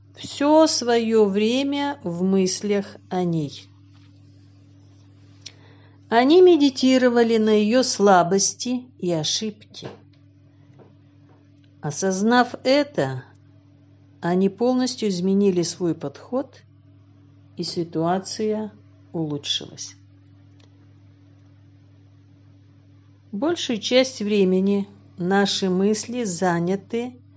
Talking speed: 65 wpm